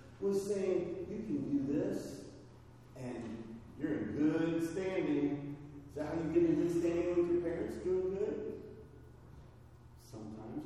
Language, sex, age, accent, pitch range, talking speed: English, male, 40-59, American, 125-180 Hz, 140 wpm